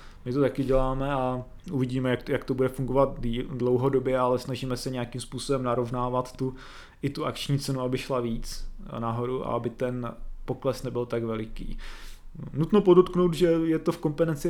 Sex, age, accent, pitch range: male, 20-39, native, 125-135 Hz